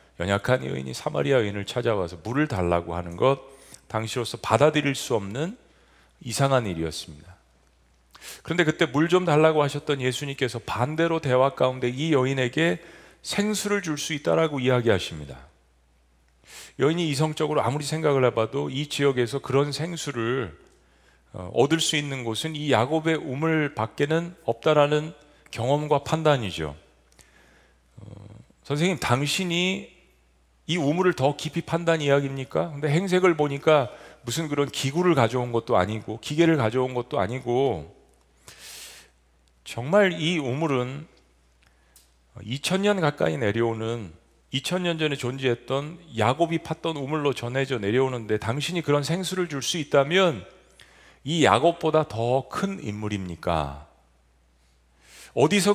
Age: 40-59